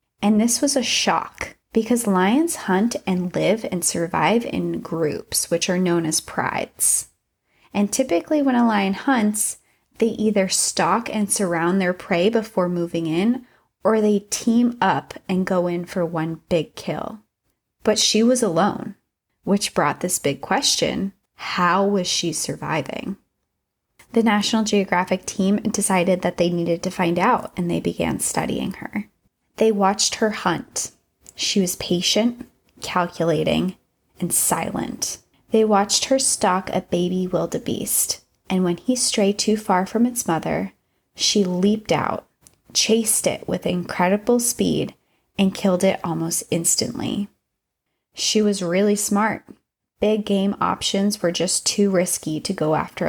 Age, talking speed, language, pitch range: 20-39, 145 wpm, English, 180-220 Hz